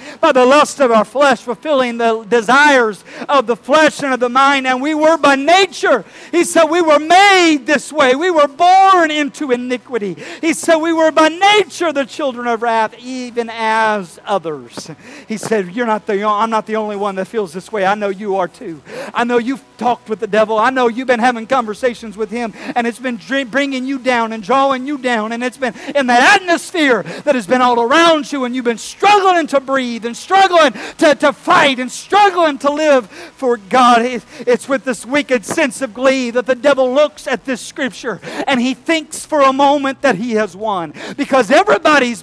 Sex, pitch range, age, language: male, 235-290 Hz, 50-69, English